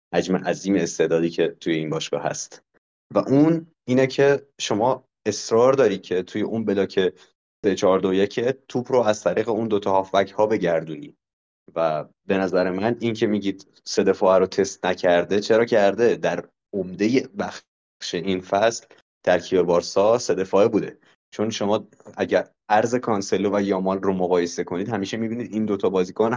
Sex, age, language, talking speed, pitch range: male, 30-49, Persian, 160 wpm, 95-115 Hz